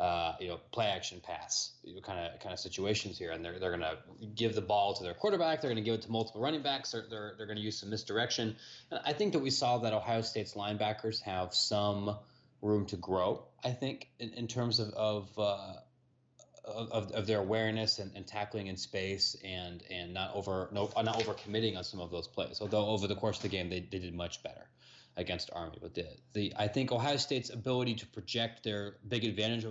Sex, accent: male, American